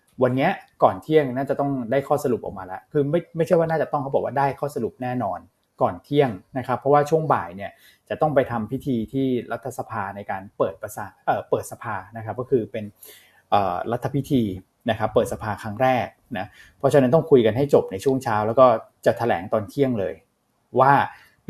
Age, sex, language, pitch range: 20-39, male, Thai, 115-145 Hz